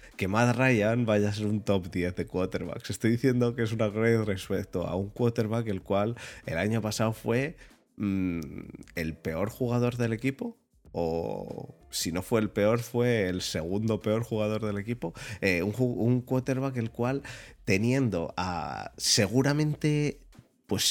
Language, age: Spanish, 30-49